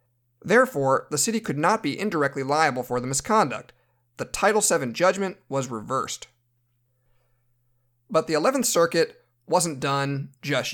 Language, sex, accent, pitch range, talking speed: English, male, American, 120-155 Hz, 135 wpm